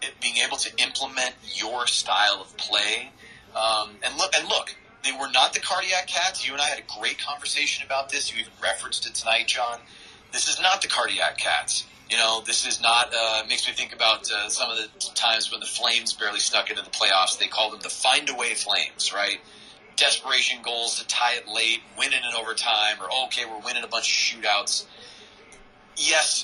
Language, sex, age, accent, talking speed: English, male, 30-49, American, 205 wpm